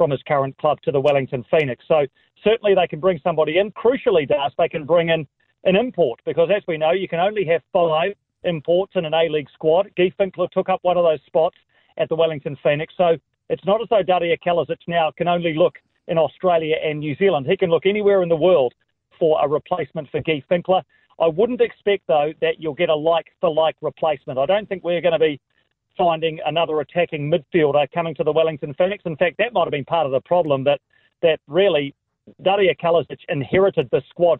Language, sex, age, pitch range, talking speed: English, male, 40-59, 150-180 Hz, 215 wpm